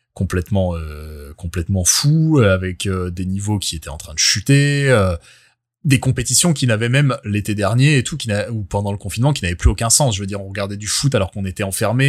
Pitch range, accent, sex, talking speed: 100-130 Hz, French, male, 225 wpm